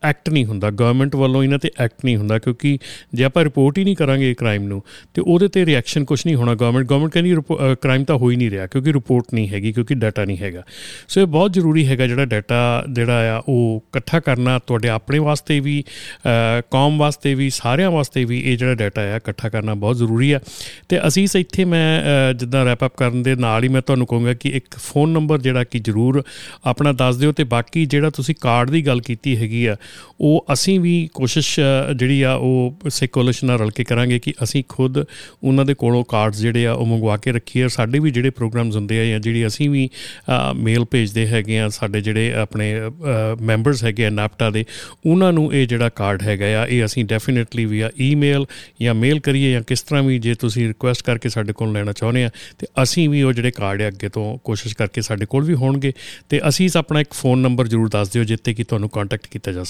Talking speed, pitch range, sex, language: 195 wpm, 115-140 Hz, male, Punjabi